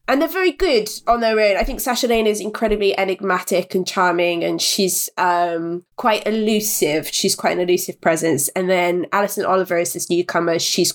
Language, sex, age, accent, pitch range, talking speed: English, female, 20-39, British, 175-225 Hz, 185 wpm